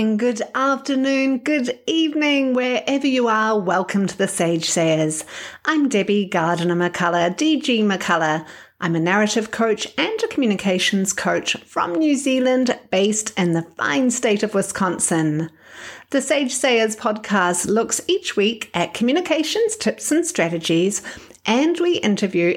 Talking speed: 135 wpm